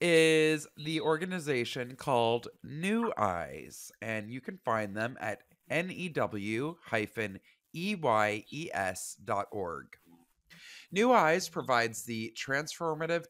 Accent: American